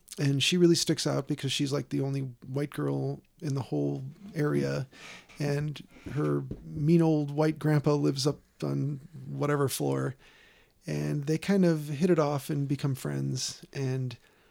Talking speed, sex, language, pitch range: 155 wpm, male, English, 135-160 Hz